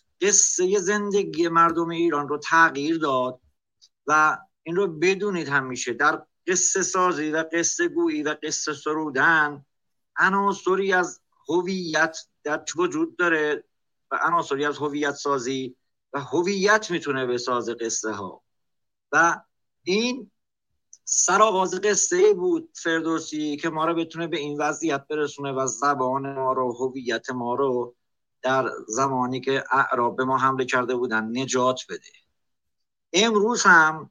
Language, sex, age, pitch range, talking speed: Persian, male, 50-69, 135-180 Hz, 130 wpm